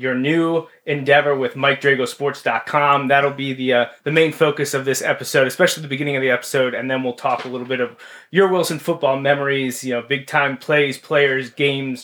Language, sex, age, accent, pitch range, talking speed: English, male, 30-49, American, 130-155 Hz, 195 wpm